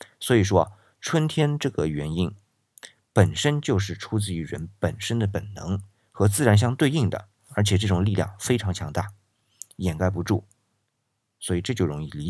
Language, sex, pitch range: Chinese, male, 95-115 Hz